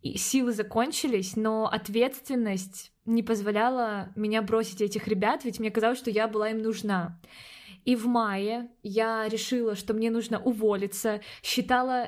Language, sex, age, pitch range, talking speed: Russian, female, 20-39, 210-245 Hz, 140 wpm